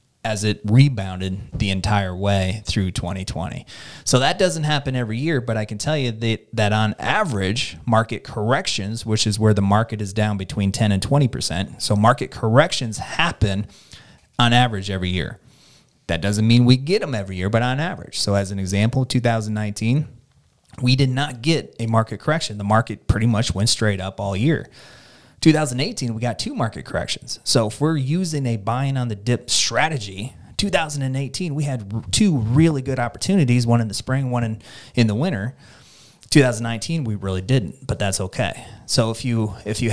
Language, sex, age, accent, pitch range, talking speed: English, male, 30-49, American, 105-130 Hz, 180 wpm